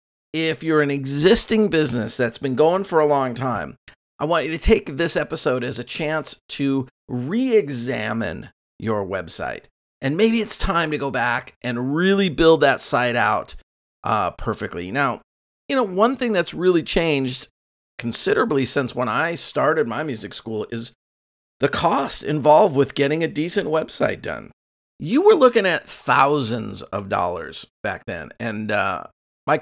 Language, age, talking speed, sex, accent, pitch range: English, 40-59, 160 wpm, male, American, 110-155 Hz